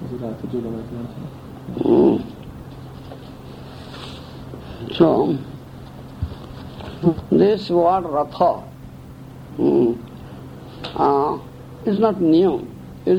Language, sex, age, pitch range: Hungarian, male, 60-79, 135-170 Hz